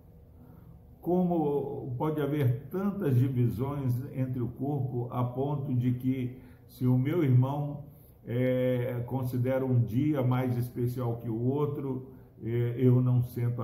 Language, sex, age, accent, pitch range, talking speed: Portuguese, male, 60-79, Brazilian, 120-145 Hz, 120 wpm